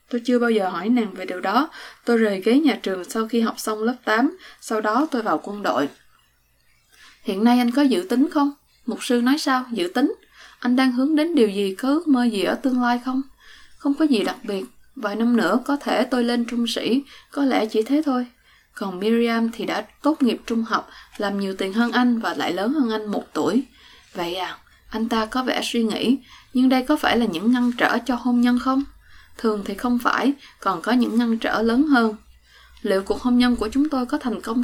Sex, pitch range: female, 220-260 Hz